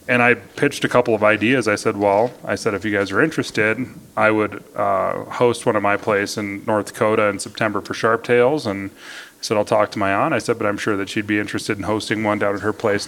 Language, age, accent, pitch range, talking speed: English, 30-49, American, 100-115 Hz, 255 wpm